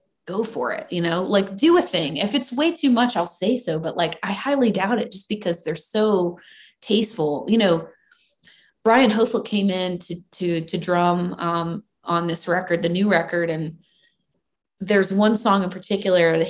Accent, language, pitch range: American, English, 180-245 Hz